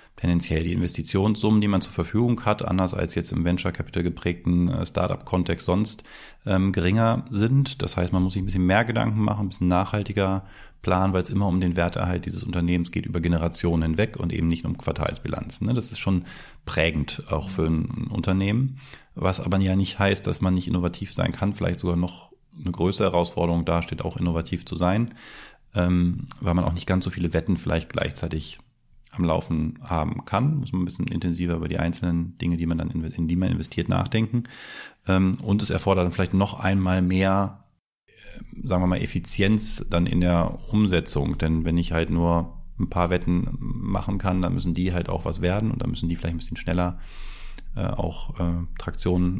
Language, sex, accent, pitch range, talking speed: German, male, German, 85-100 Hz, 190 wpm